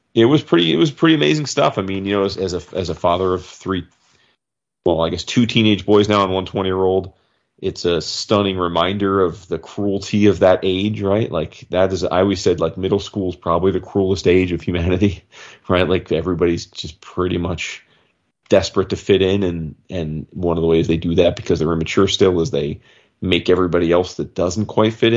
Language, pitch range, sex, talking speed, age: English, 90-115 Hz, male, 215 wpm, 30-49